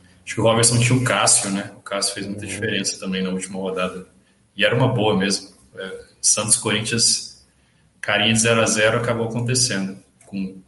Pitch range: 105-125 Hz